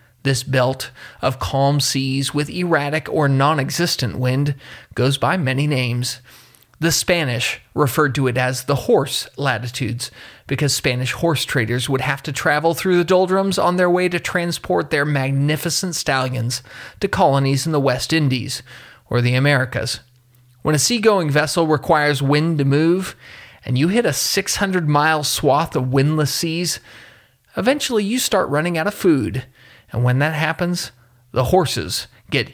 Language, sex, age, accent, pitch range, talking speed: English, male, 30-49, American, 125-165 Hz, 150 wpm